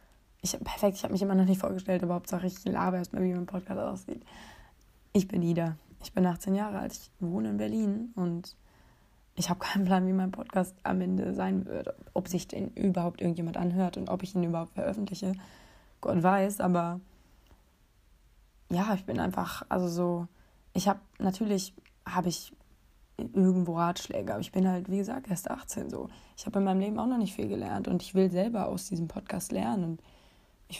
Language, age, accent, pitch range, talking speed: German, 20-39, German, 175-200 Hz, 195 wpm